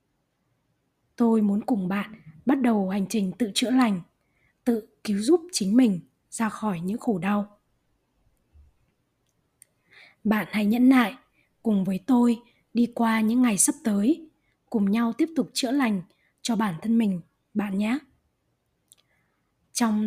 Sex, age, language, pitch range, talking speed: female, 20-39, Vietnamese, 200-250 Hz, 140 wpm